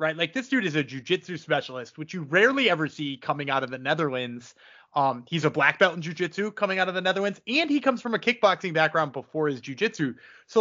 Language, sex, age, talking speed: English, male, 20-39, 230 wpm